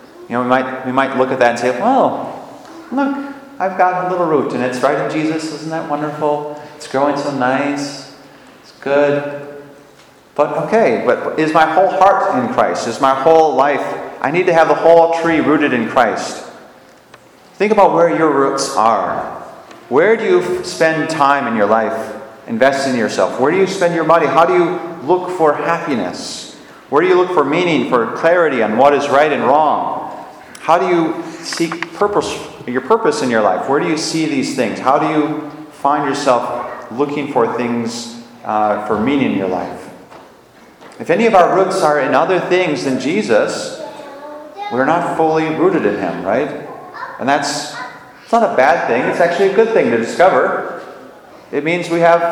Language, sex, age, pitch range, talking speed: English, male, 30-49, 140-180 Hz, 190 wpm